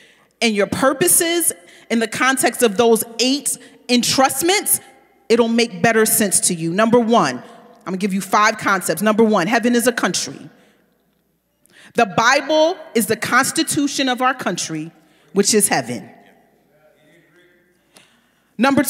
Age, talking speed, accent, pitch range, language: 40-59, 135 wpm, American, 210-305 Hz, English